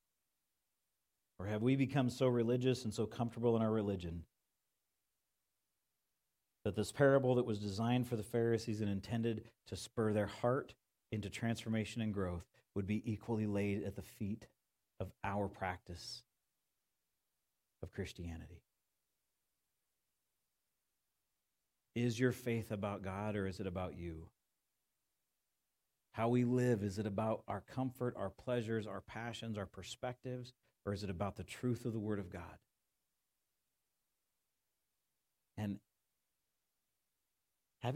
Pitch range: 100-120 Hz